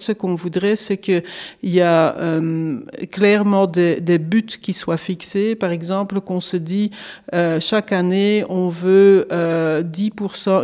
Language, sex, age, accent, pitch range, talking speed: French, female, 40-59, French, 180-210 Hz, 145 wpm